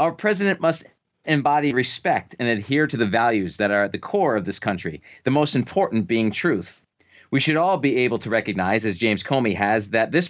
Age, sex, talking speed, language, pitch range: 40-59, male, 210 wpm, English, 110-155 Hz